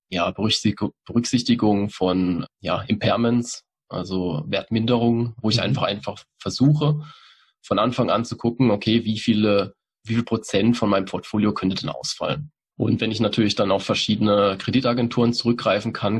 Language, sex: German, male